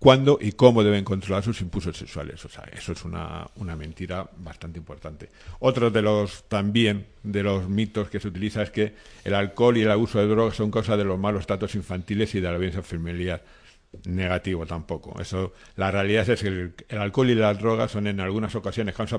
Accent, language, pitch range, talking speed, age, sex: Spanish, Spanish, 95-110 Hz, 205 wpm, 50-69, male